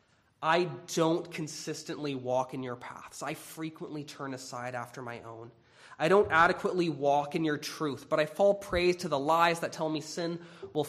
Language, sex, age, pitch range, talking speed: English, male, 20-39, 135-175 Hz, 180 wpm